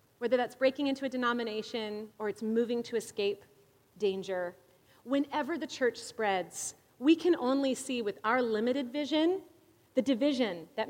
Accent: American